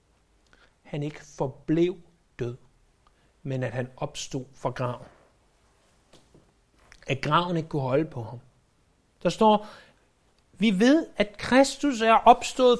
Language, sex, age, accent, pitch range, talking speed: Danish, male, 60-79, native, 140-225 Hz, 120 wpm